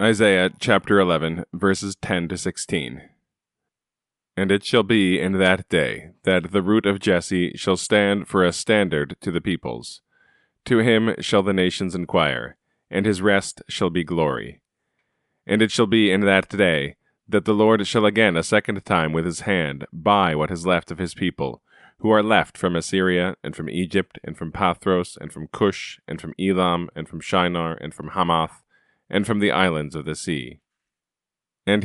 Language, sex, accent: English, male, American